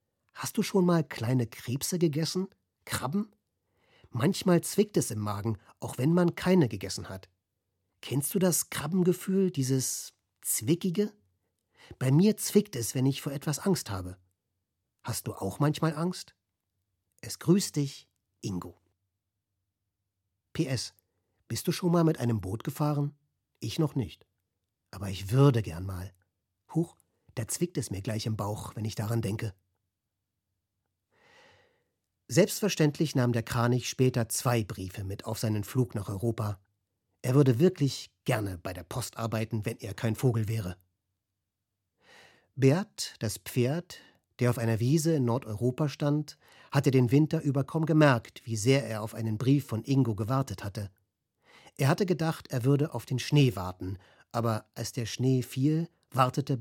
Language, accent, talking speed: German, German, 150 wpm